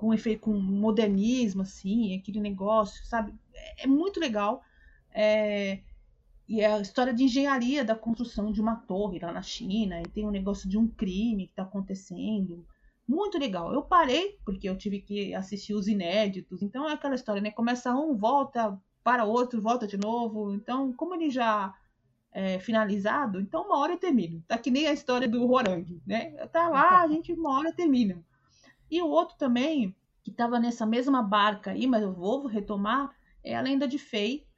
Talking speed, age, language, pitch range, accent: 185 wpm, 30-49, Portuguese, 210-280 Hz, Brazilian